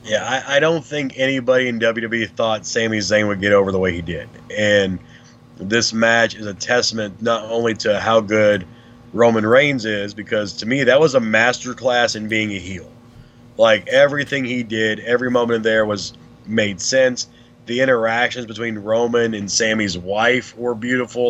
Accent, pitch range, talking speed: American, 115-130 Hz, 180 wpm